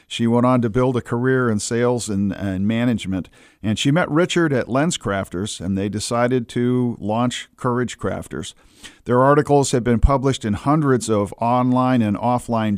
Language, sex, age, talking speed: English, male, 50-69, 170 wpm